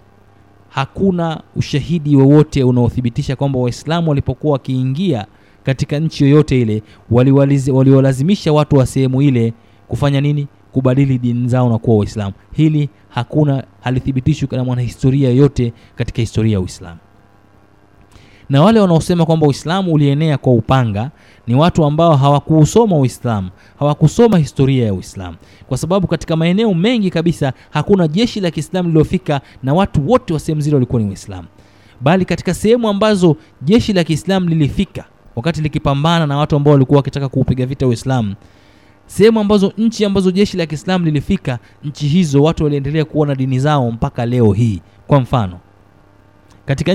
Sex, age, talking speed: male, 30-49, 145 wpm